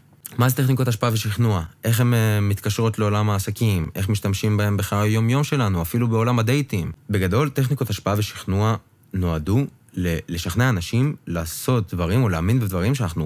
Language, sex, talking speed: Hebrew, male, 145 wpm